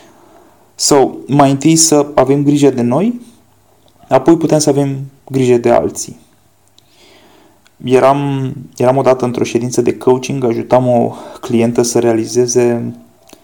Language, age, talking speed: Romanian, 20-39, 125 wpm